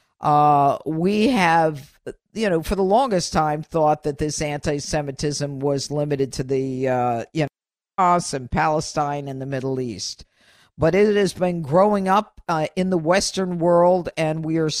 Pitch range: 150-190 Hz